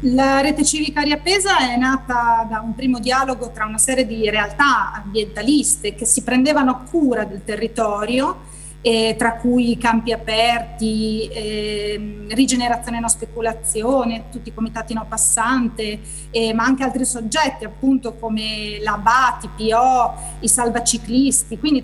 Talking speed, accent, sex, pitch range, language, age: 135 wpm, native, female, 220-265 Hz, Italian, 30-49